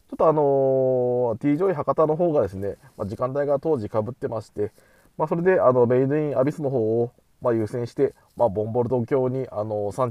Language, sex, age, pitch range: Japanese, male, 20-39, 110-150 Hz